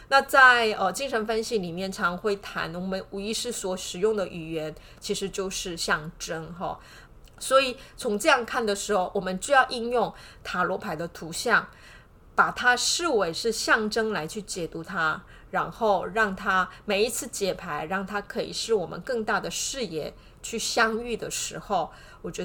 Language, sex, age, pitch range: Chinese, female, 30-49, 185-235 Hz